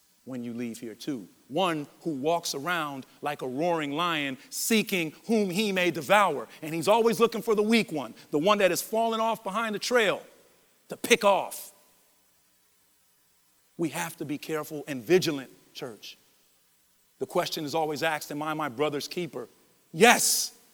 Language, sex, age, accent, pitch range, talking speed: English, male, 40-59, American, 155-210 Hz, 165 wpm